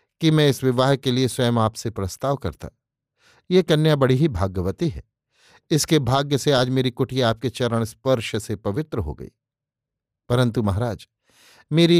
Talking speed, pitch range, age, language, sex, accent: 160 wpm, 115-145 Hz, 50-69, Hindi, male, native